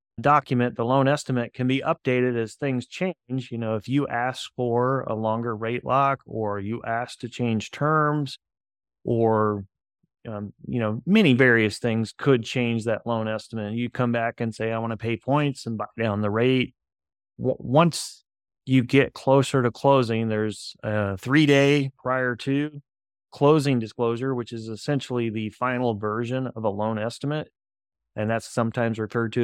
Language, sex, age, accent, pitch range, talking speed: English, male, 30-49, American, 110-130 Hz, 165 wpm